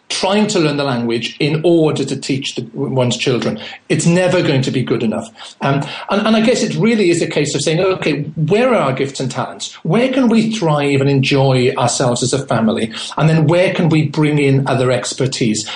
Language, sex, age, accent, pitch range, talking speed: English, male, 40-59, British, 130-160 Hz, 215 wpm